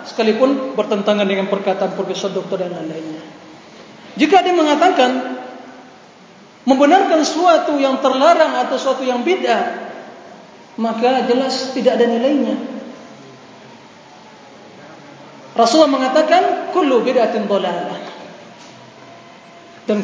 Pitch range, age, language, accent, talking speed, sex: 215-260 Hz, 40-59, Indonesian, native, 85 wpm, male